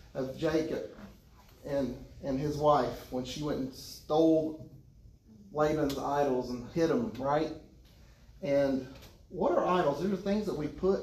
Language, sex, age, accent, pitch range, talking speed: English, male, 40-59, American, 130-165 Hz, 150 wpm